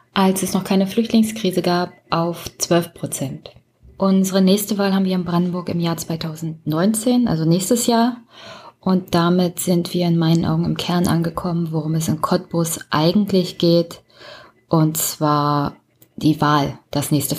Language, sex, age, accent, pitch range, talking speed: German, female, 20-39, German, 165-195 Hz, 150 wpm